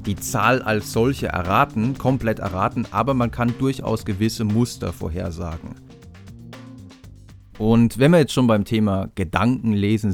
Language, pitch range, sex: German, 100-130 Hz, male